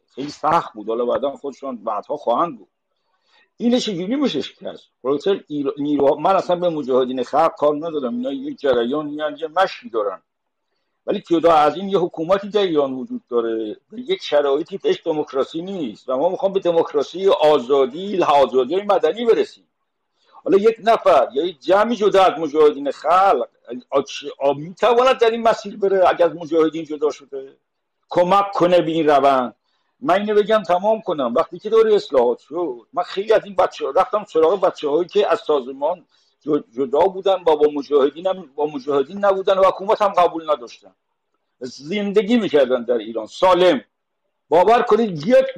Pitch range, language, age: 145-235 Hz, Persian, 60-79